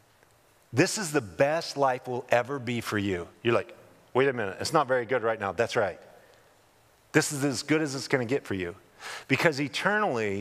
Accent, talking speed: American, 210 wpm